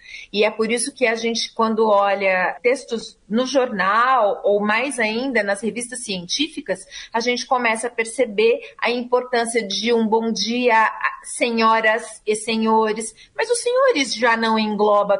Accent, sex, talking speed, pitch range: Brazilian, female, 150 wpm, 210-280 Hz